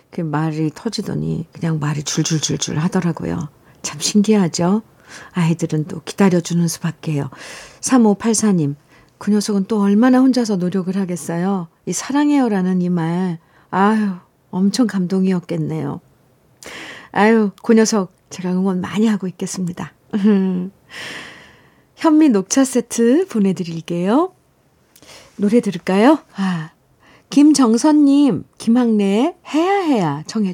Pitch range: 170-235 Hz